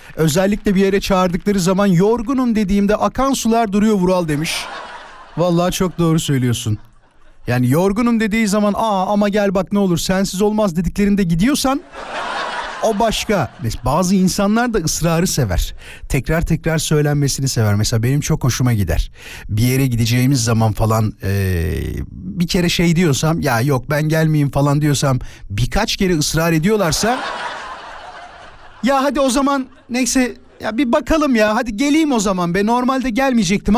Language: Turkish